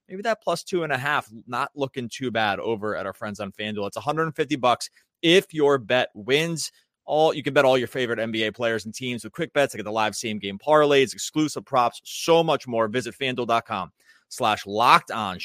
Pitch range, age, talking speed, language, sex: 115-170 Hz, 30-49, 210 wpm, English, male